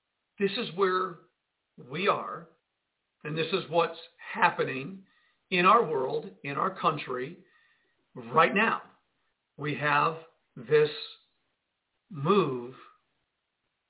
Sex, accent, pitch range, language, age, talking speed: male, American, 180-245 Hz, English, 50-69, 95 wpm